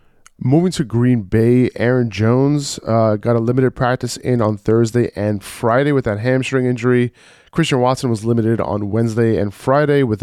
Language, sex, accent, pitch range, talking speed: English, male, American, 105-125 Hz, 170 wpm